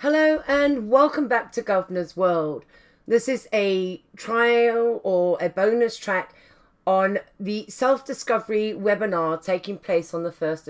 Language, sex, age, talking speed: English, female, 40-59, 135 wpm